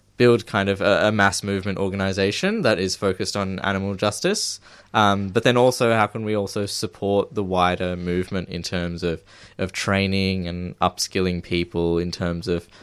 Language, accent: English, Australian